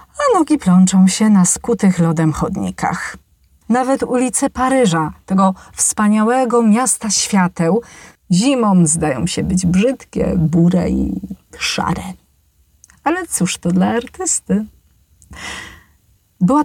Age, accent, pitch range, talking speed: 30-49, native, 165-220 Hz, 105 wpm